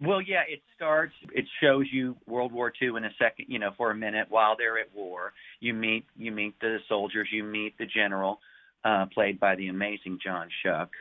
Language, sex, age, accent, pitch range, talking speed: English, male, 40-59, American, 90-105 Hz, 215 wpm